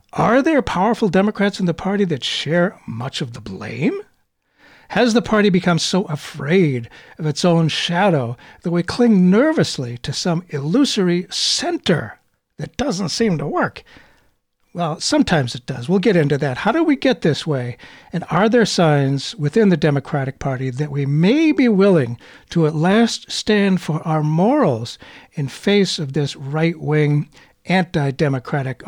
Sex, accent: male, American